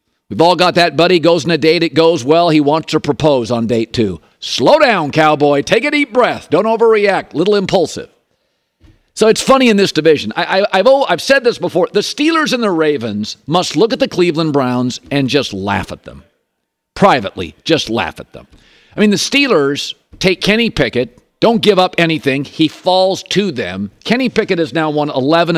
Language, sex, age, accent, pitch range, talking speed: English, male, 50-69, American, 145-195 Hz, 195 wpm